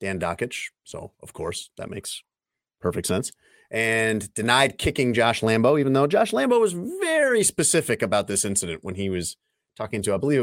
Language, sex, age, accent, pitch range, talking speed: English, male, 30-49, American, 100-140 Hz, 180 wpm